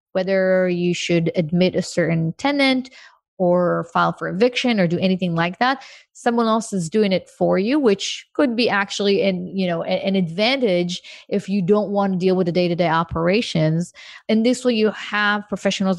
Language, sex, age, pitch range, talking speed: English, female, 30-49, 180-215 Hz, 175 wpm